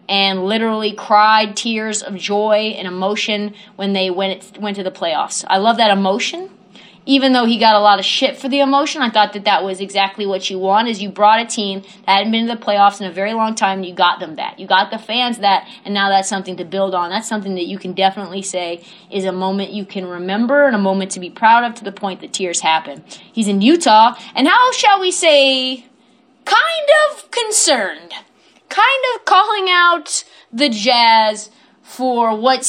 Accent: American